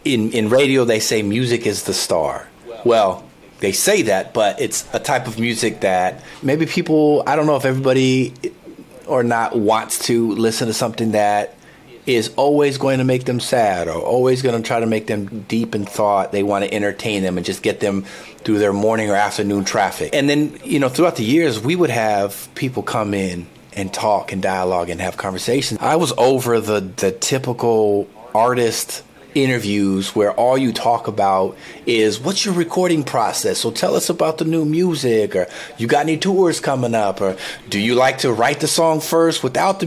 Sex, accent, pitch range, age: male, American, 105-155 Hz, 30-49